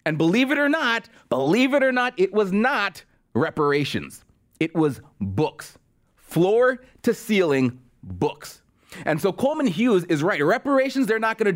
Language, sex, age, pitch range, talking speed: English, male, 30-49, 160-220 Hz, 155 wpm